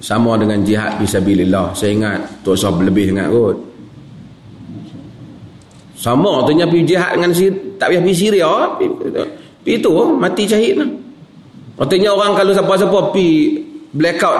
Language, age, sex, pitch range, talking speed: Malay, 30-49, male, 135-215 Hz, 125 wpm